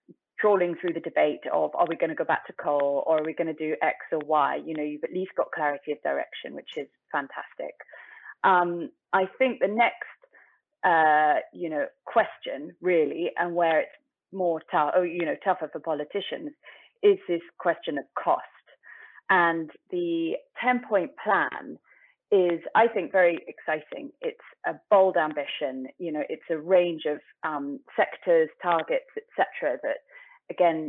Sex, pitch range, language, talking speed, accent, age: female, 160-250 Hz, English, 160 wpm, British, 30-49